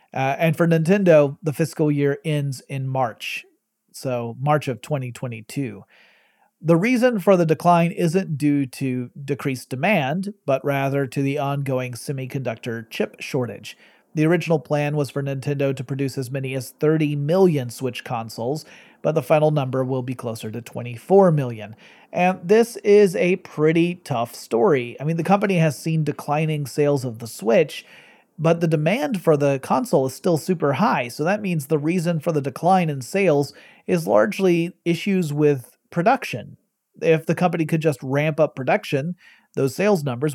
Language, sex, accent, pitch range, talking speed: English, male, American, 135-170 Hz, 165 wpm